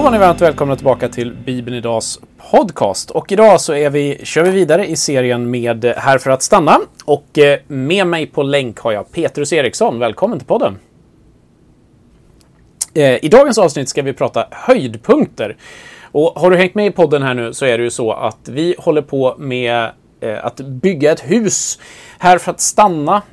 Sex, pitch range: male, 120-155 Hz